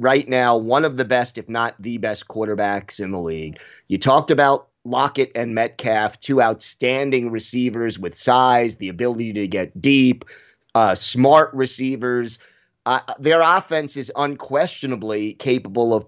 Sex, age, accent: male, 30-49, American